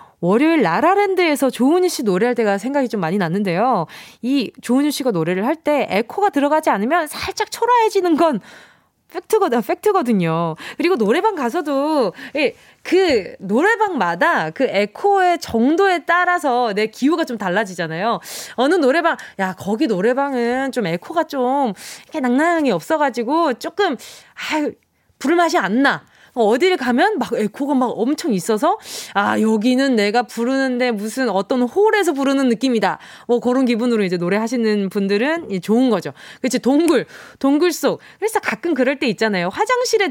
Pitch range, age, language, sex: 215-335 Hz, 20-39, Korean, female